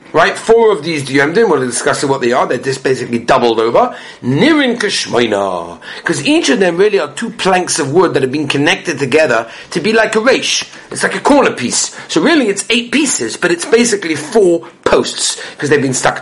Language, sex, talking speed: English, male, 205 wpm